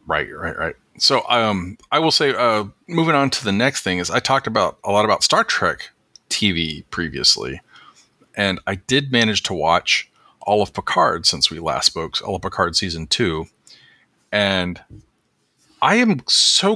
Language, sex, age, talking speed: English, male, 40-59, 175 wpm